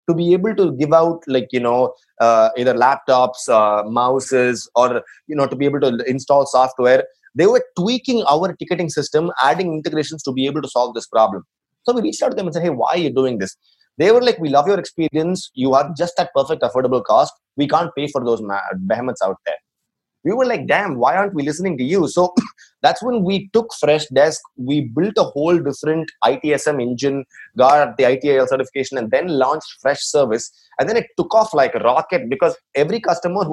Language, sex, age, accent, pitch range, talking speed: English, male, 20-39, Indian, 135-180 Hz, 210 wpm